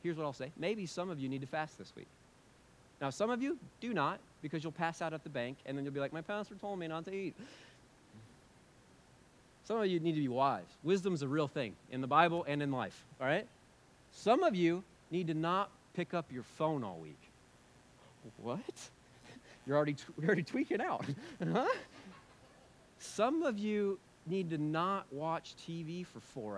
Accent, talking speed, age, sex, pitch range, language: American, 195 wpm, 40-59, male, 140-195 Hz, English